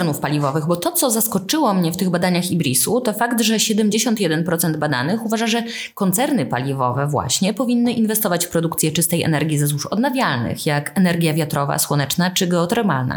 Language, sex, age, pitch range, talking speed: Polish, female, 20-39, 170-230 Hz, 160 wpm